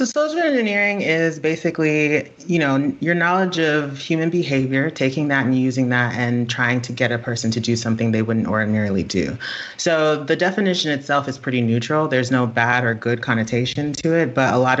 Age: 30-49